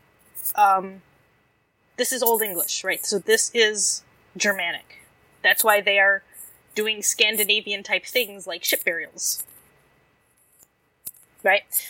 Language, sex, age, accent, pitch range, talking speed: English, female, 20-39, American, 205-250 Hz, 110 wpm